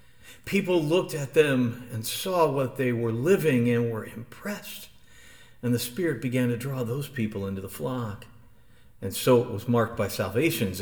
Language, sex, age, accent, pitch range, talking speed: English, male, 50-69, American, 120-195 Hz, 170 wpm